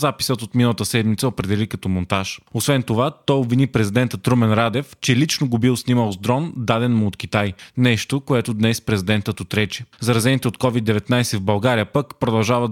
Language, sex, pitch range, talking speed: Bulgarian, male, 110-130 Hz, 175 wpm